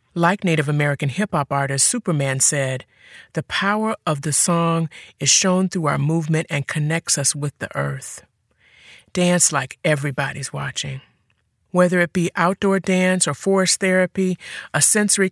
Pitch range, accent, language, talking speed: 145-175 Hz, American, English, 145 wpm